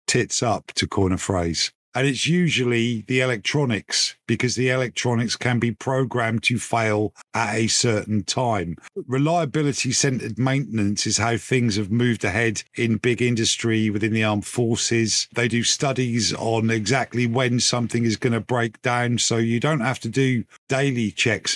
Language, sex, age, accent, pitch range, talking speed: English, male, 50-69, British, 110-130 Hz, 160 wpm